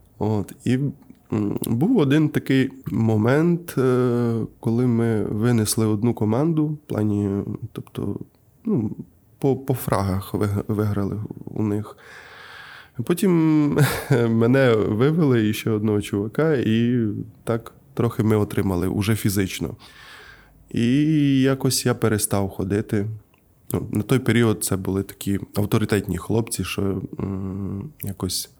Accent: native